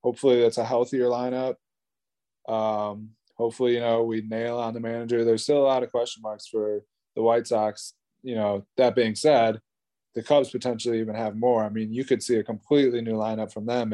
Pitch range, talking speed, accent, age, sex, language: 110-125 Hz, 200 wpm, American, 20-39, male, English